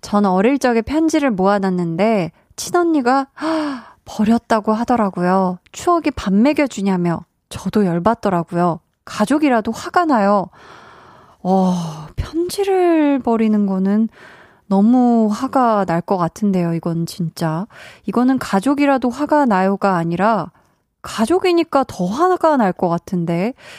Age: 20-39